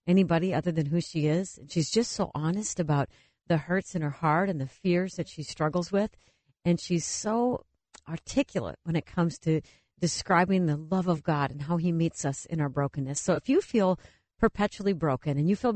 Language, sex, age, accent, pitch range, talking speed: English, female, 50-69, American, 155-200 Hz, 200 wpm